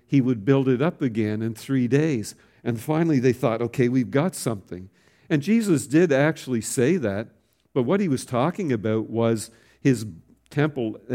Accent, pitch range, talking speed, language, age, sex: American, 115-145 Hz, 170 wpm, English, 50-69, male